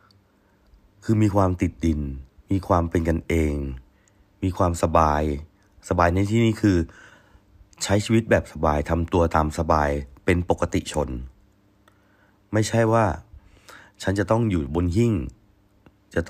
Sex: male